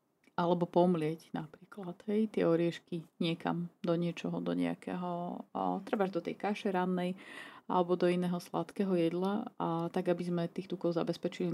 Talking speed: 145 wpm